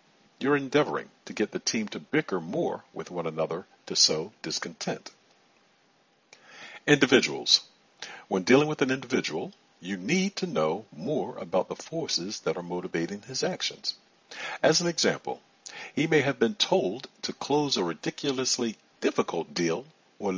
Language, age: English, 60-79